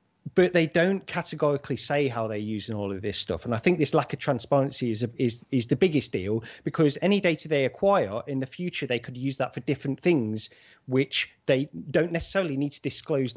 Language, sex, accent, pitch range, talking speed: English, male, British, 115-150 Hz, 215 wpm